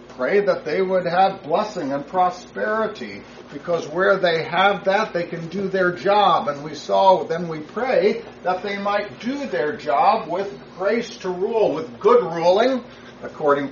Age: 50-69